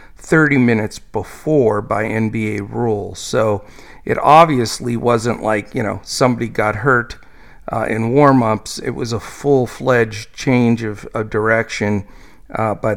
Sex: male